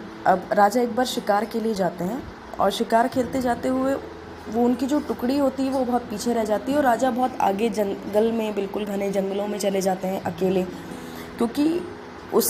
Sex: female